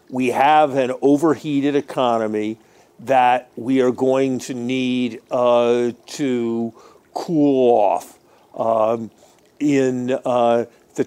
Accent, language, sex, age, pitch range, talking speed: American, English, male, 50-69, 120-140 Hz, 105 wpm